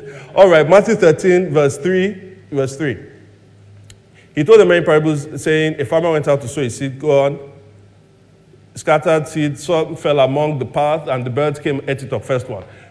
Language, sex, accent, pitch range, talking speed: English, male, Nigerian, 130-175 Hz, 190 wpm